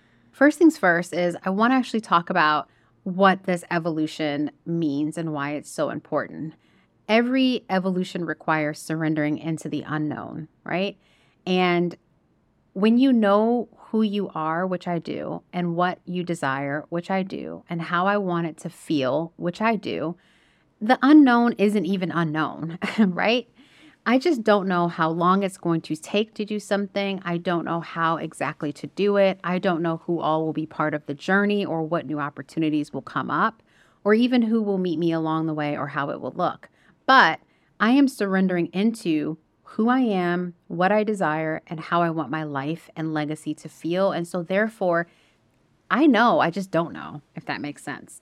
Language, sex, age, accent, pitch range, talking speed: English, female, 30-49, American, 155-200 Hz, 185 wpm